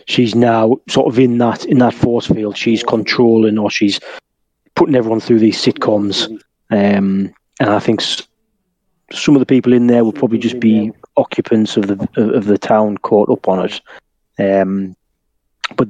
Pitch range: 100-120 Hz